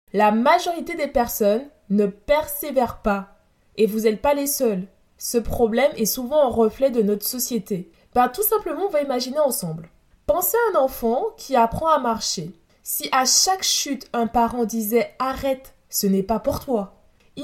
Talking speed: 180 wpm